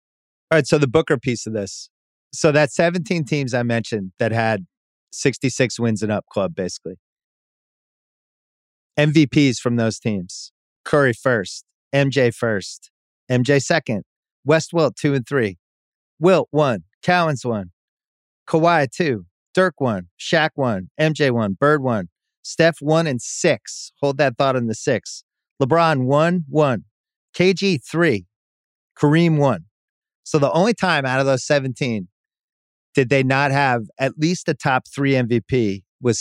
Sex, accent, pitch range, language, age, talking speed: male, American, 110-150 Hz, English, 40-59, 145 wpm